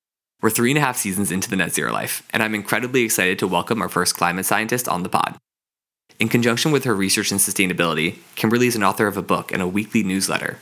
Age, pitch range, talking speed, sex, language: 20-39, 95-115 Hz, 230 wpm, male, English